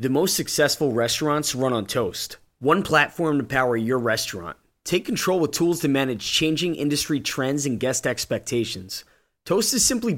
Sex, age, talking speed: male, 20-39, 165 wpm